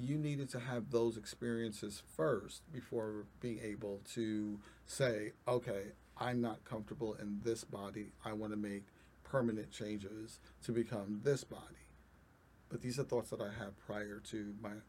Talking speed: 155 wpm